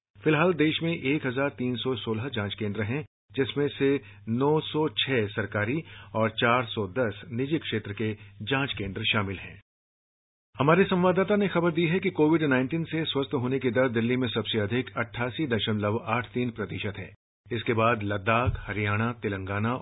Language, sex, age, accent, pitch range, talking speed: English, male, 50-69, Indian, 105-140 Hz, 135 wpm